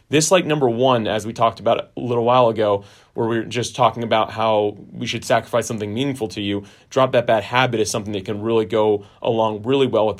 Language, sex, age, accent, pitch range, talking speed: English, male, 30-49, American, 105-130 Hz, 235 wpm